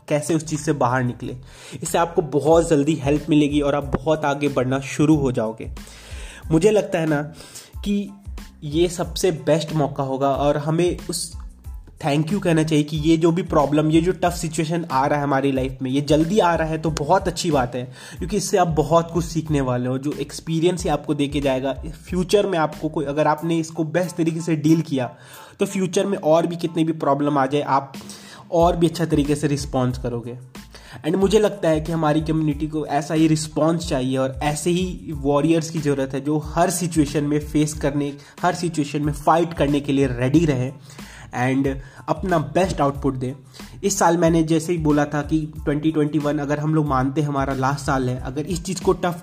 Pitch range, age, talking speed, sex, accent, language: 140-170 Hz, 20-39, 205 wpm, male, native, Hindi